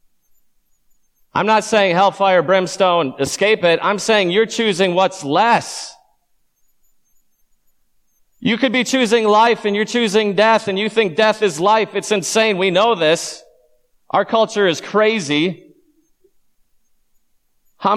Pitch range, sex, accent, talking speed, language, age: 150-220 Hz, male, American, 125 wpm, English, 40-59